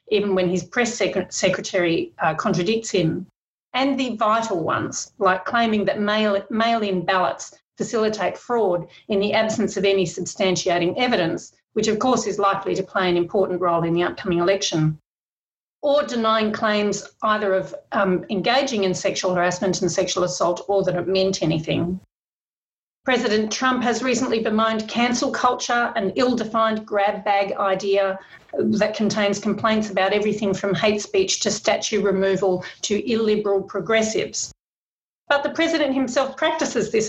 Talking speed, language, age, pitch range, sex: 145 wpm, English, 40-59, 195-225 Hz, female